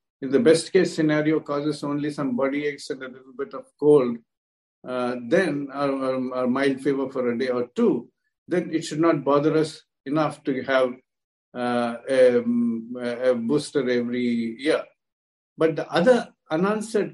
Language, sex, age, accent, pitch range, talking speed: English, male, 50-69, Indian, 130-165 Hz, 155 wpm